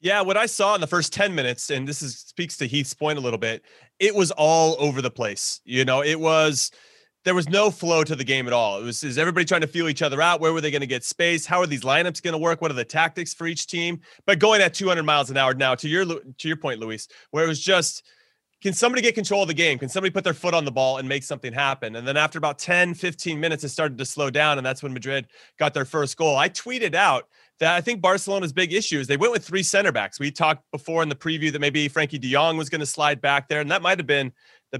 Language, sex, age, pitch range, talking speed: English, male, 30-49, 145-185 Hz, 280 wpm